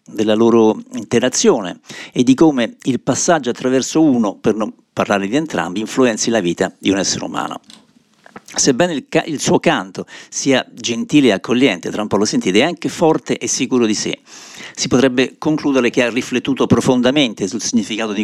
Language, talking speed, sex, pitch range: Italian, 175 wpm, male, 110-135 Hz